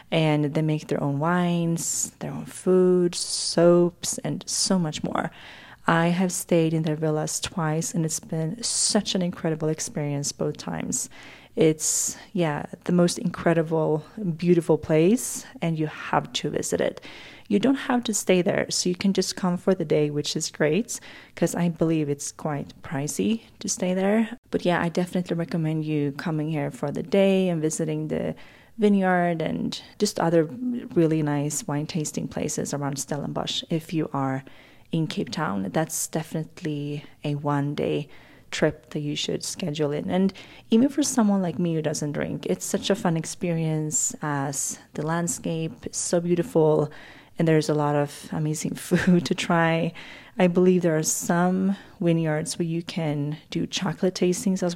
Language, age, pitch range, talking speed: English, 30-49, 155-185 Hz, 170 wpm